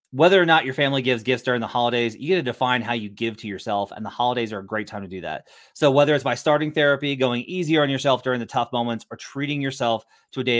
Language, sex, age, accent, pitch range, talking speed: English, male, 30-49, American, 115-140 Hz, 275 wpm